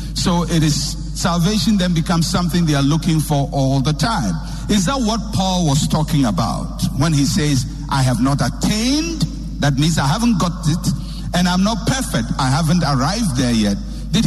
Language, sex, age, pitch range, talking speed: English, male, 60-79, 145-185 Hz, 185 wpm